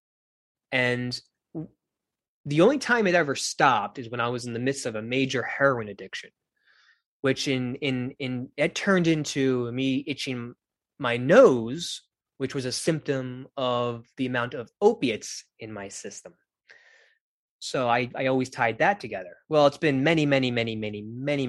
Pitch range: 110-145 Hz